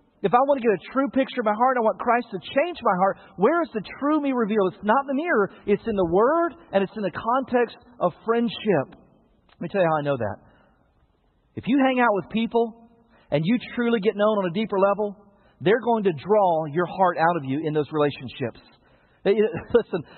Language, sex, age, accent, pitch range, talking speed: English, male, 40-59, American, 180-230 Hz, 225 wpm